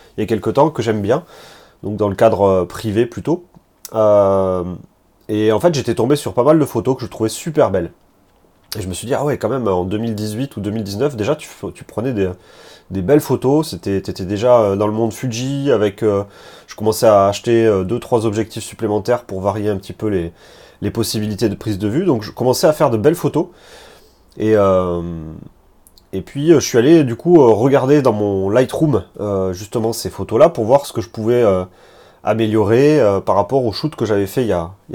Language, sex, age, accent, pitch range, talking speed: French, male, 30-49, French, 100-135 Hz, 215 wpm